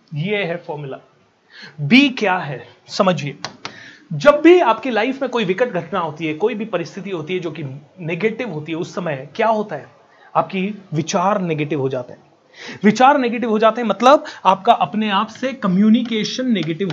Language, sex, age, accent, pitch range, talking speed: Hindi, male, 30-49, native, 195-245 Hz, 180 wpm